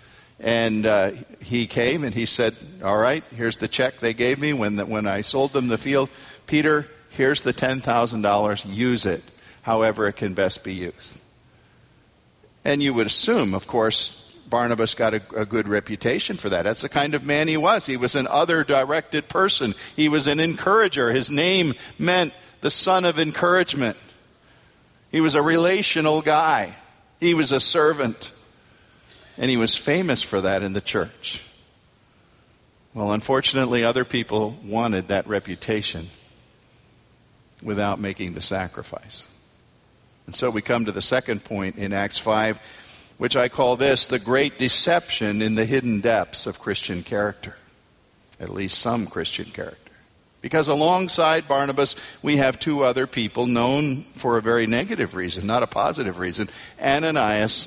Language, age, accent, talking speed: English, 50-69, American, 155 wpm